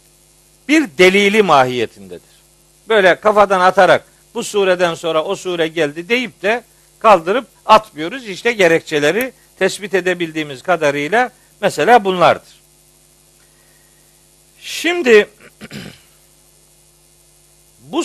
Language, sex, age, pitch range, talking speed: Turkish, male, 60-79, 170-225 Hz, 85 wpm